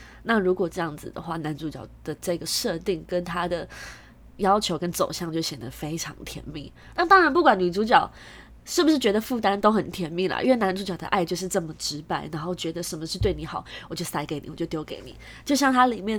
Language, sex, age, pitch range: Chinese, female, 20-39, 160-230 Hz